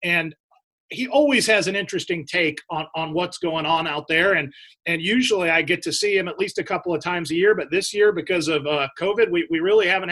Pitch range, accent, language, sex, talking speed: 175-225 Hz, American, English, male, 245 wpm